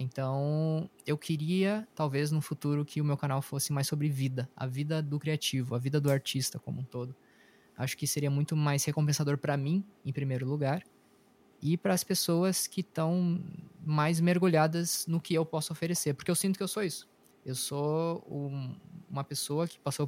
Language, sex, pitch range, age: Portuguese, male, 140-175 Hz, 20-39